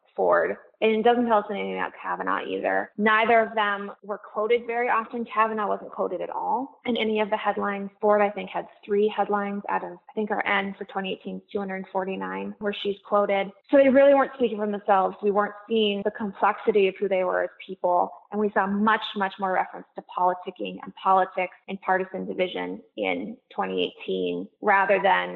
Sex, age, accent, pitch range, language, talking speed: female, 20-39, American, 190-220 Hz, English, 190 wpm